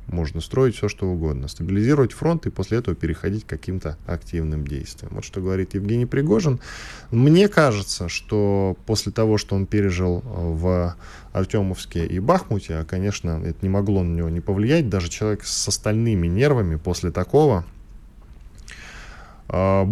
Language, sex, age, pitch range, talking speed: Russian, male, 10-29, 85-110 Hz, 150 wpm